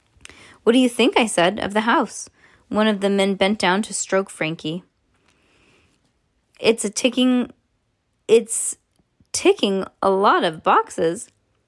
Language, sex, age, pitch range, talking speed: English, female, 20-39, 175-230 Hz, 140 wpm